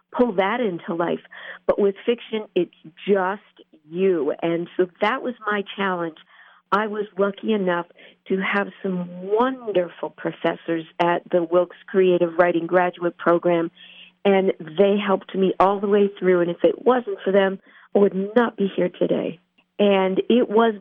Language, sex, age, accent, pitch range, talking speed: English, female, 50-69, American, 180-225 Hz, 160 wpm